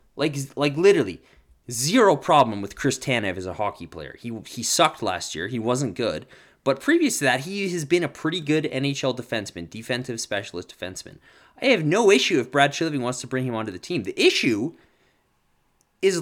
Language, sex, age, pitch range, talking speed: English, male, 20-39, 115-165 Hz, 190 wpm